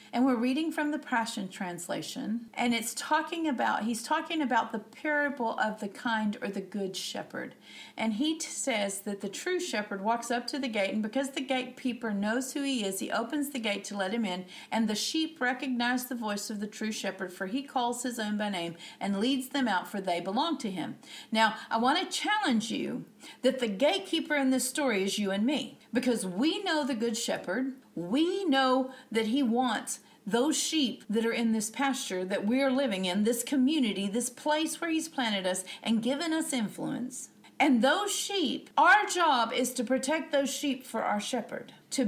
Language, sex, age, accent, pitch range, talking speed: English, female, 50-69, American, 220-285 Hz, 205 wpm